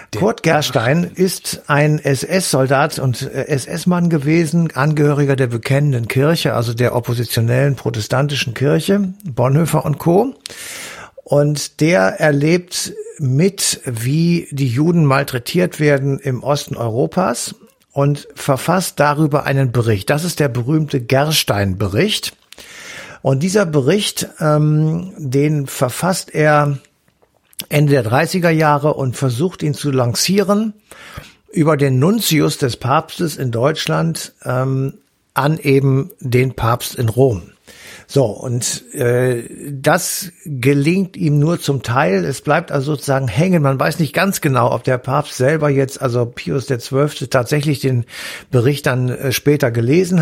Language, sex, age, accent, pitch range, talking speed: German, male, 60-79, German, 130-160 Hz, 125 wpm